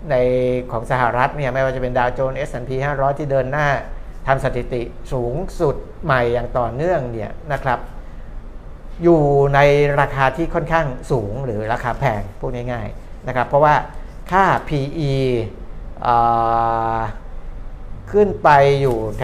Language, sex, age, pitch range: Thai, male, 60-79, 115-145 Hz